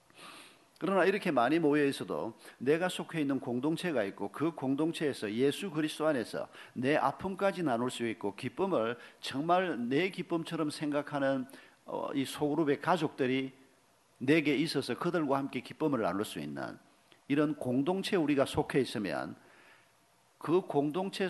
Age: 50-69